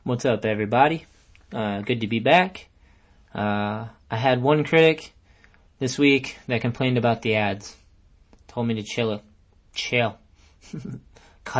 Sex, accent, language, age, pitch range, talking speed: male, American, English, 20-39, 105-130 Hz, 140 wpm